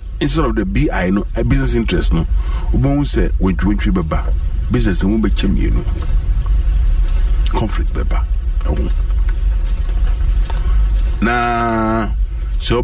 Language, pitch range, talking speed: English, 75-125 Hz, 115 wpm